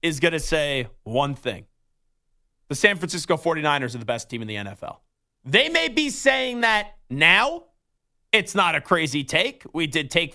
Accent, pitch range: American, 165-215 Hz